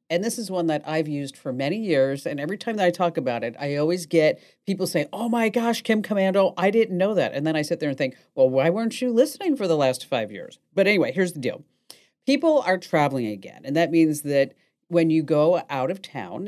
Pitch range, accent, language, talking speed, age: 140-185 Hz, American, English, 250 wpm, 50-69